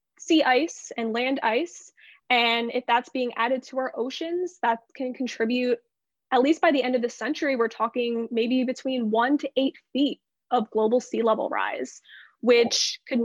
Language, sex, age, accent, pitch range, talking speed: English, female, 20-39, American, 230-270 Hz, 175 wpm